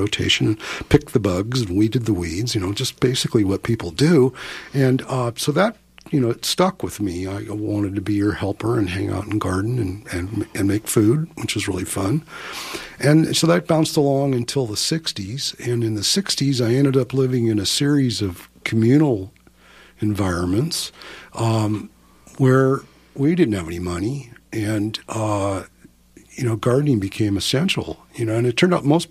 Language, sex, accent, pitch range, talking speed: English, male, American, 100-130 Hz, 185 wpm